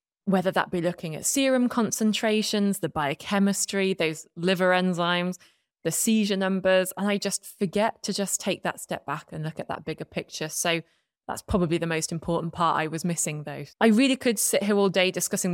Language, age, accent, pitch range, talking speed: English, 20-39, British, 165-210 Hz, 195 wpm